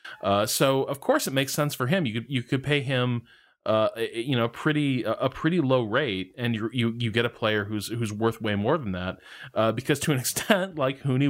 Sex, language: male, English